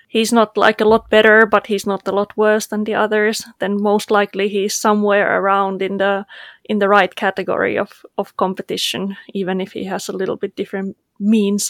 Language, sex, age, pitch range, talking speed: English, female, 20-39, 200-230 Hz, 200 wpm